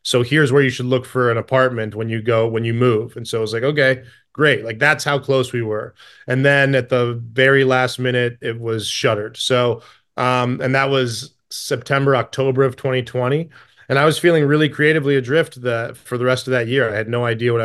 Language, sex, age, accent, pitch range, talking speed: English, male, 20-39, American, 120-140 Hz, 225 wpm